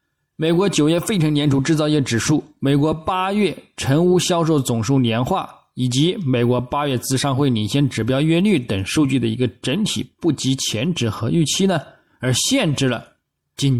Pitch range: 120-165 Hz